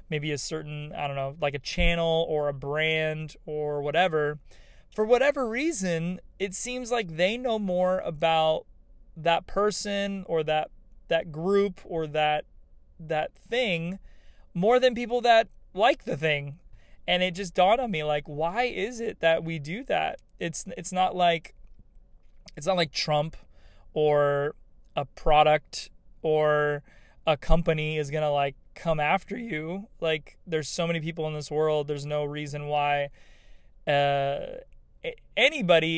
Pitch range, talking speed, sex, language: 150-175 Hz, 150 wpm, male, English